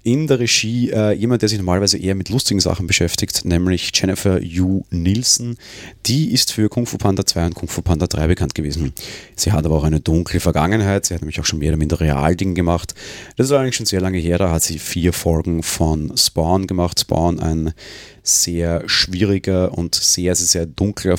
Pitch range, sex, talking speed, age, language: 85-110 Hz, male, 200 wpm, 30-49, German